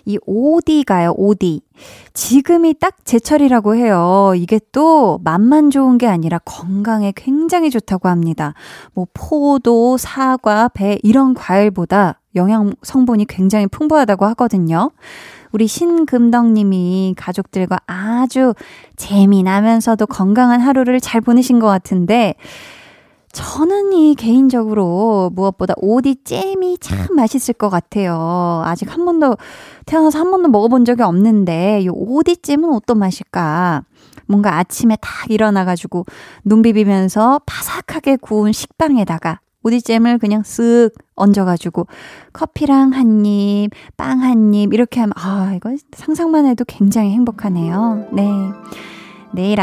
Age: 20-39